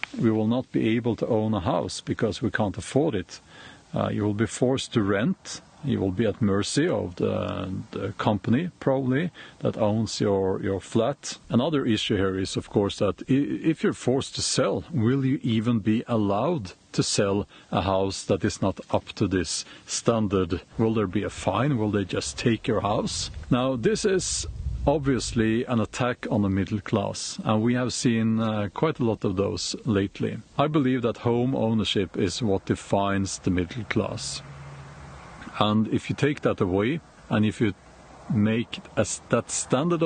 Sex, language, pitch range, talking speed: male, English, 100-125 Hz, 180 wpm